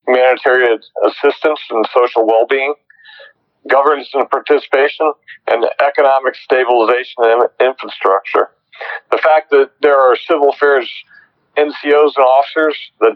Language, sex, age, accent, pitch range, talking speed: English, male, 50-69, American, 120-145 Hz, 110 wpm